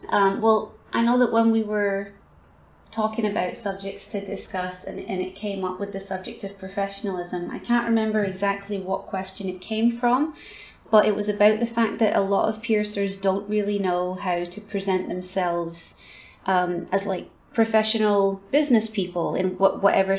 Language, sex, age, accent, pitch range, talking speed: English, female, 20-39, British, 180-210 Hz, 170 wpm